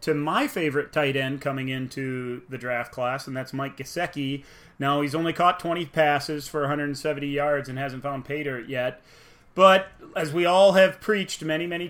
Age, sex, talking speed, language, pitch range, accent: 30-49, male, 185 wpm, English, 140-160 Hz, American